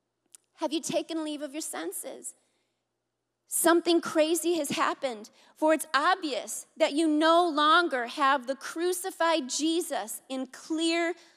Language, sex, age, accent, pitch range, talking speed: English, female, 30-49, American, 260-335 Hz, 125 wpm